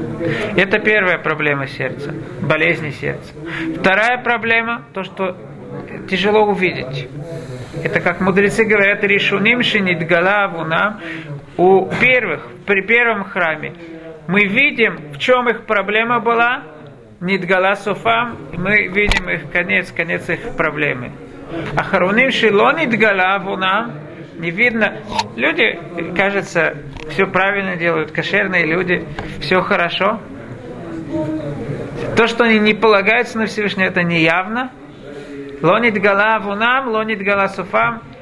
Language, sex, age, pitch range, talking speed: Russian, male, 50-69, 155-210 Hz, 105 wpm